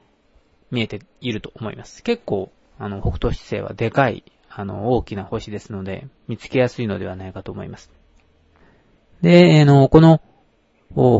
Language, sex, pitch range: Japanese, male, 100-130 Hz